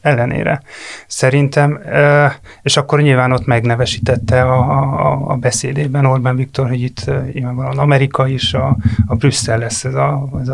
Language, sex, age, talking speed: Hungarian, male, 30-49, 140 wpm